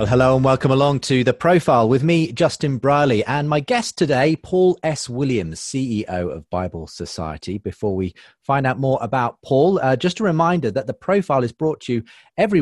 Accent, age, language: British, 30-49, English